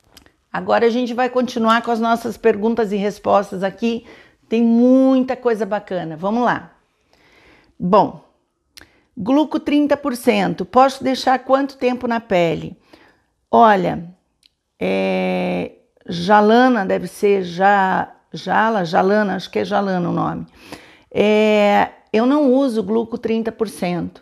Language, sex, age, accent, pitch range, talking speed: Portuguese, female, 50-69, Brazilian, 200-240 Hz, 105 wpm